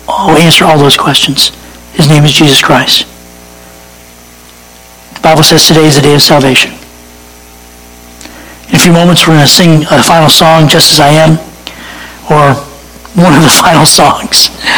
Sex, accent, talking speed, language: male, American, 160 wpm, English